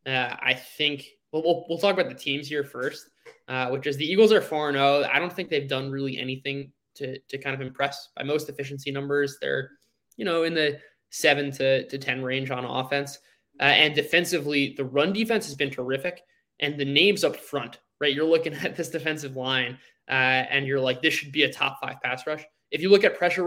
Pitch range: 135-155 Hz